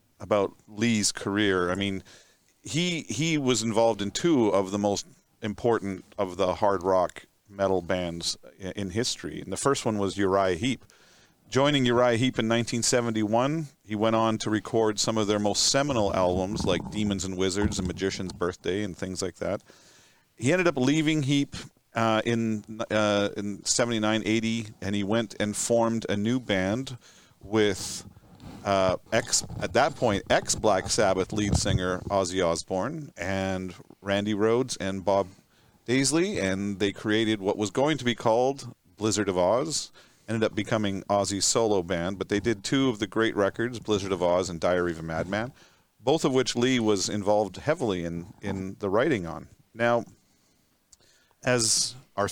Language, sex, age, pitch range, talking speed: English, male, 40-59, 95-115 Hz, 165 wpm